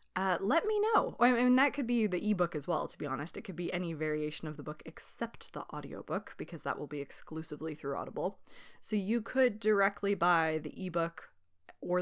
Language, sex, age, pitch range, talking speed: English, female, 20-39, 155-210 Hz, 210 wpm